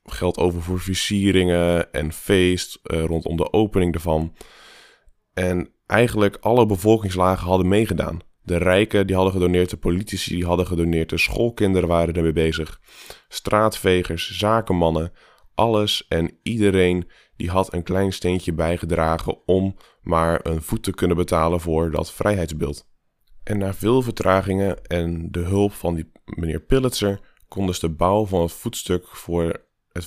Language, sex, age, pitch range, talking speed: Dutch, male, 20-39, 85-100 Hz, 150 wpm